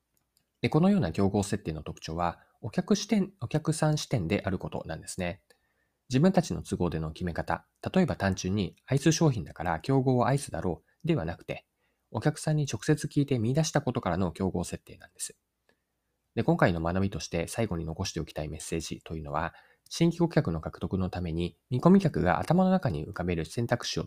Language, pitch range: Japanese, 85-135 Hz